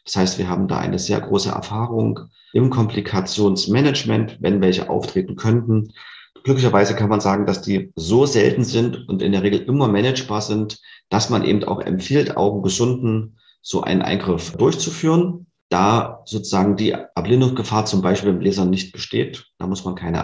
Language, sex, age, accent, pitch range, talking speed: German, male, 40-59, German, 95-115 Hz, 165 wpm